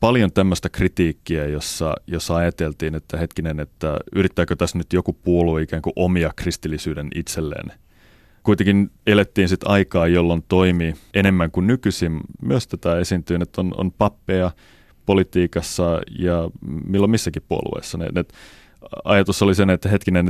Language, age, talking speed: Finnish, 30-49, 135 wpm